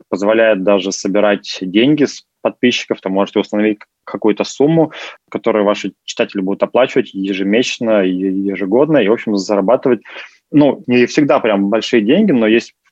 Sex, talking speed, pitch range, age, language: male, 140 wpm, 100-120 Hz, 20-39, Russian